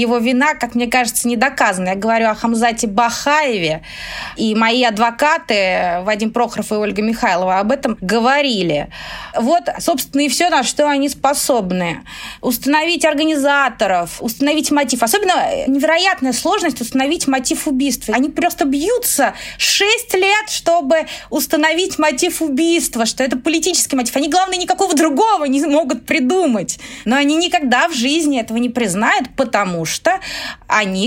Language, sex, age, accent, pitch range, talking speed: Russian, female, 20-39, native, 225-300 Hz, 140 wpm